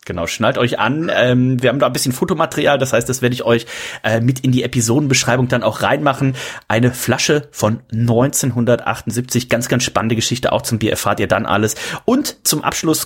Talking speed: 200 wpm